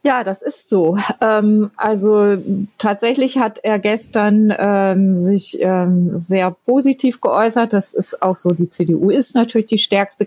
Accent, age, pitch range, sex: German, 30-49, 180-215 Hz, female